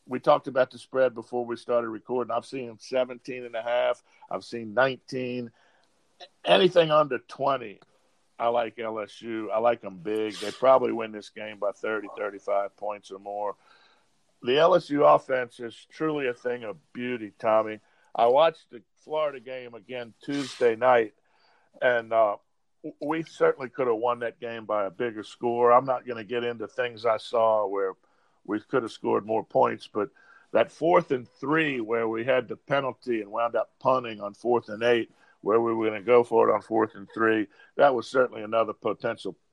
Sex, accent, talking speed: male, American, 180 wpm